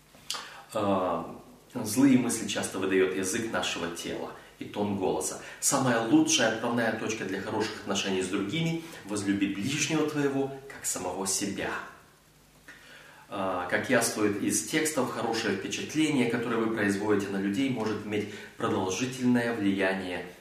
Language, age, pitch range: Russian, 30-49, 100-125 Hz